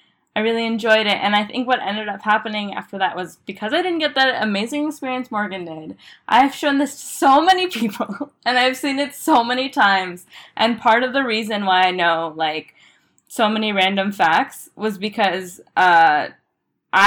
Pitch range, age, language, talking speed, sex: 200-280 Hz, 10-29, English, 185 wpm, female